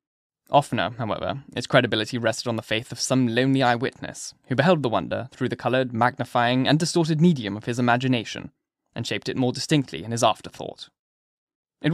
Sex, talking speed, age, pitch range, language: male, 175 wpm, 10-29, 120-150 Hz, English